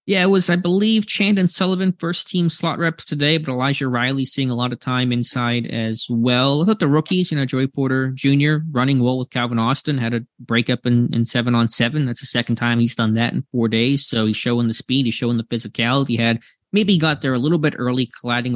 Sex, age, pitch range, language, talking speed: male, 20-39, 115-150 Hz, English, 235 wpm